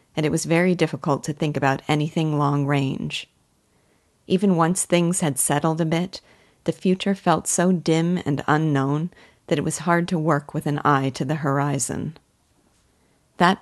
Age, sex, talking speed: 40-59, female, 165 wpm